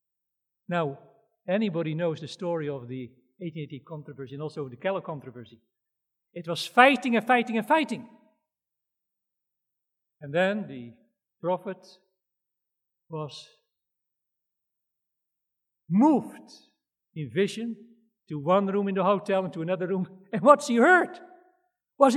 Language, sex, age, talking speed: English, male, 50-69, 120 wpm